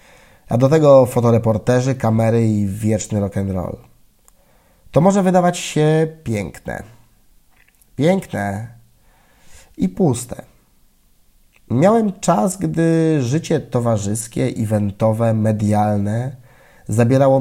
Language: Polish